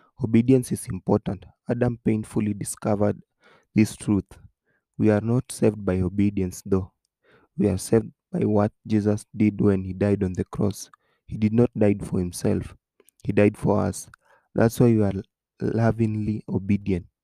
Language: English